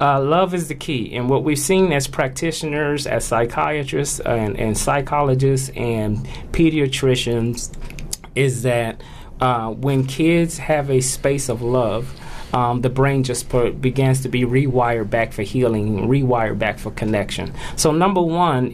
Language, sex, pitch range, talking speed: English, male, 125-145 Hz, 150 wpm